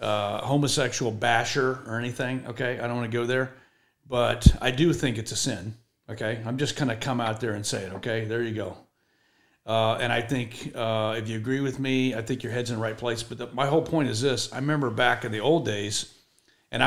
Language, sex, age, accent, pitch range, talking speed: English, male, 40-59, American, 110-130 Hz, 240 wpm